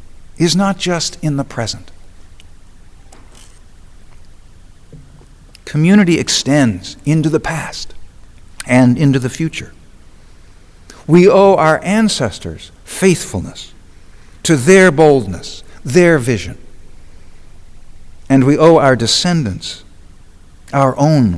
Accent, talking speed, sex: American, 90 wpm, male